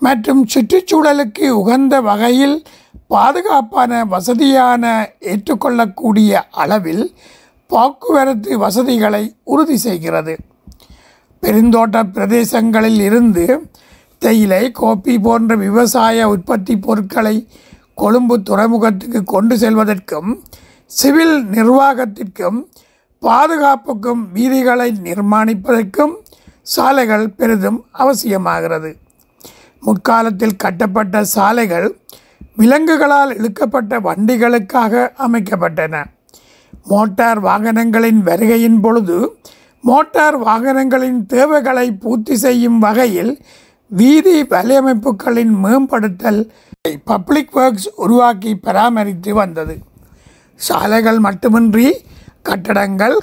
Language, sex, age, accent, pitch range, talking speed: Tamil, male, 50-69, native, 215-260 Hz, 70 wpm